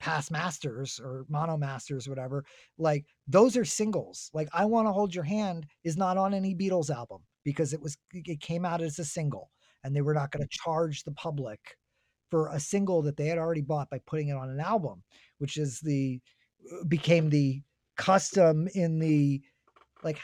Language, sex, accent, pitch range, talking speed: English, male, American, 140-170 Hz, 190 wpm